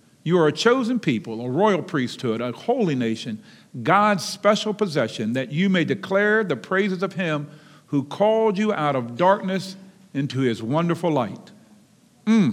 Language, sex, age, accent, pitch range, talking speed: English, male, 50-69, American, 135-205 Hz, 160 wpm